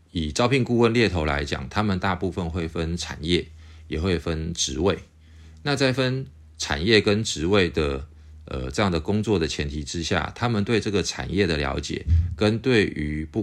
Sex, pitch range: male, 75-105 Hz